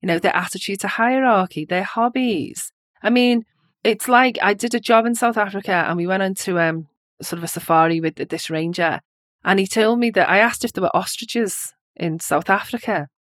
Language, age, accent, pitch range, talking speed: English, 30-49, British, 180-245 Hz, 205 wpm